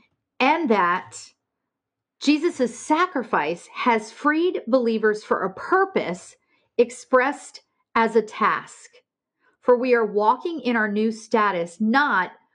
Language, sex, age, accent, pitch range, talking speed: English, female, 40-59, American, 200-260 Hz, 110 wpm